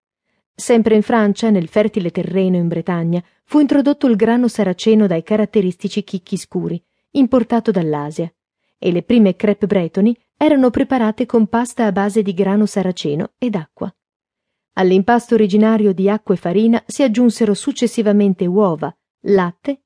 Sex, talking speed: female, 140 wpm